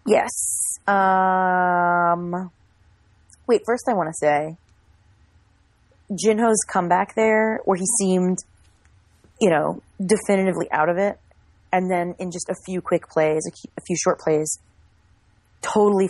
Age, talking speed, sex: 30-49, 125 wpm, female